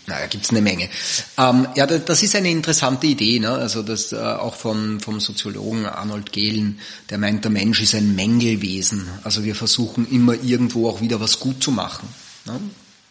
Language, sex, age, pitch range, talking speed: English, male, 30-49, 105-125 Hz, 190 wpm